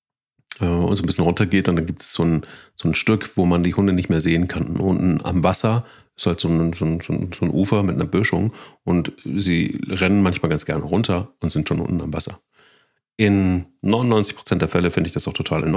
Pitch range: 85-110 Hz